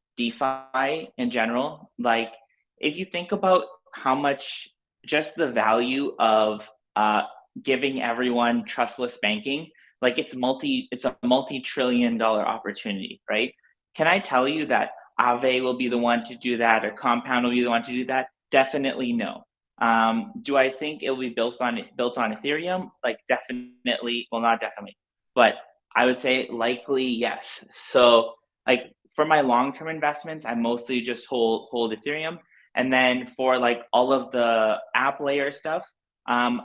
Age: 20-39